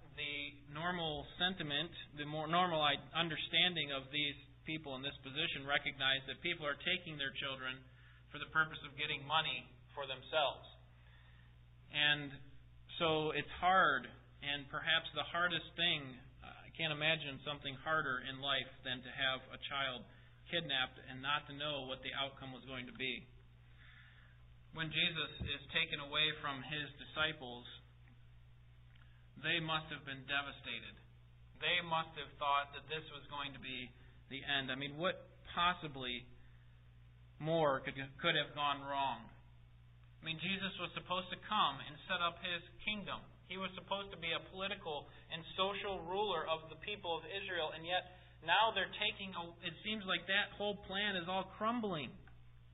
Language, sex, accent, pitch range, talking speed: English, male, American, 125-165 Hz, 155 wpm